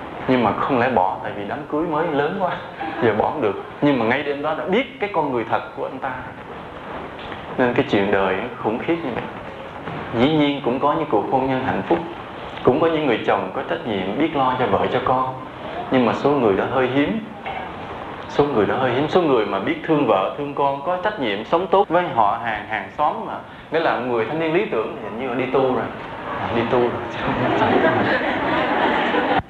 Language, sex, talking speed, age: English, male, 225 wpm, 20-39